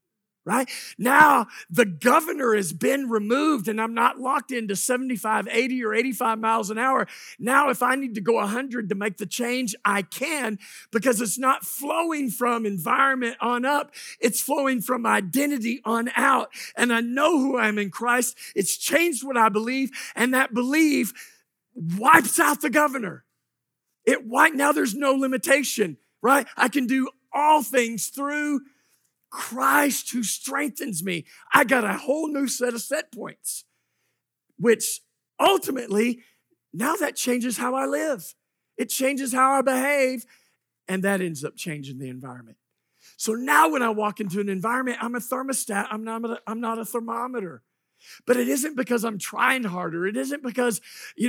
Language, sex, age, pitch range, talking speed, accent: English, male, 50-69, 220-270 Hz, 165 wpm, American